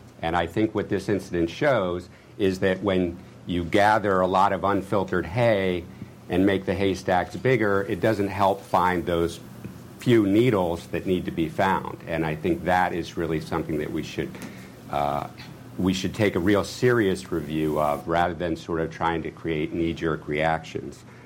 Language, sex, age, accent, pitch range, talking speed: English, male, 50-69, American, 80-100 Hz, 175 wpm